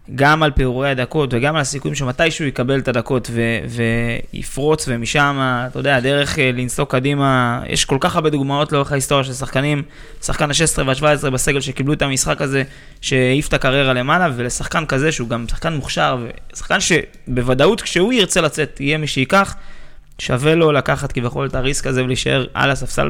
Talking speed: 175 wpm